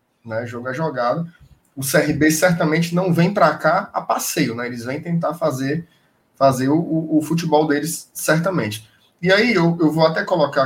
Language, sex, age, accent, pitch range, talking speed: Portuguese, male, 20-39, Brazilian, 140-190 Hz, 175 wpm